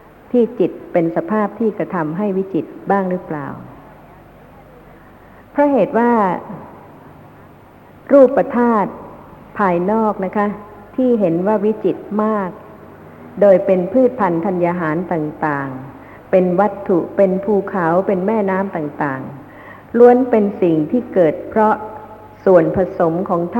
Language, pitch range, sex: Thai, 165-215 Hz, female